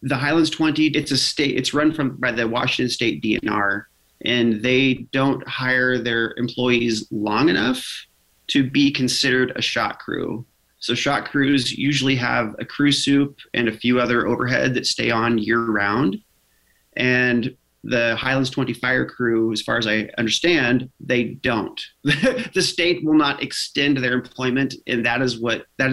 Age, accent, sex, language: 30-49, American, male, English